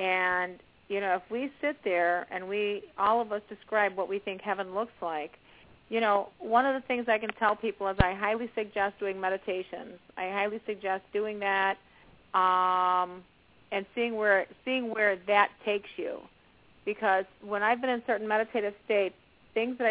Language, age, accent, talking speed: English, 40-59, American, 180 wpm